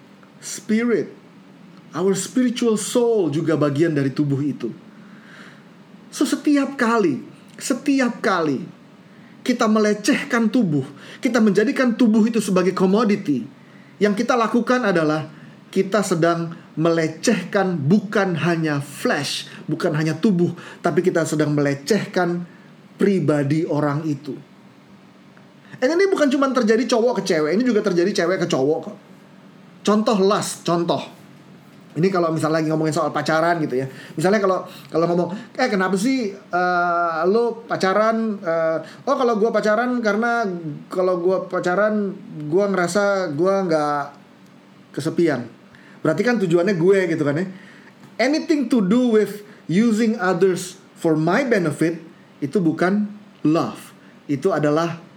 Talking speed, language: 125 wpm, Indonesian